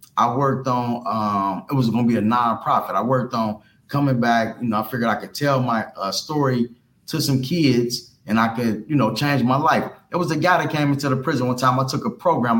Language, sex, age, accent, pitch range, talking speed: English, male, 20-39, American, 130-170 Hz, 250 wpm